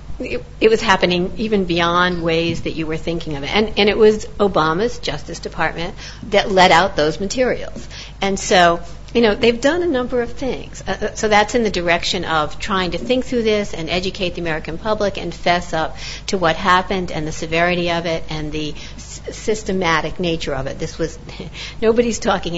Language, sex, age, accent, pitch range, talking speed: English, female, 50-69, American, 155-185 Hz, 195 wpm